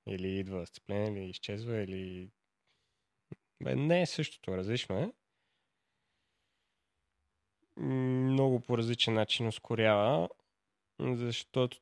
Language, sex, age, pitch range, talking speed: Bulgarian, male, 20-39, 105-135 Hz, 90 wpm